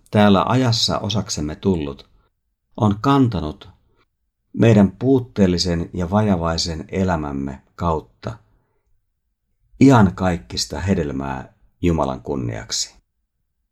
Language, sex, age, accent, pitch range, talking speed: Finnish, male, 50-69, native, 80-110 Hz, 75 wpm